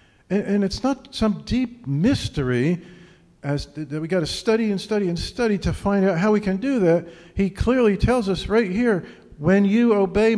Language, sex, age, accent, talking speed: English, male, 50-69, American, 185 wpm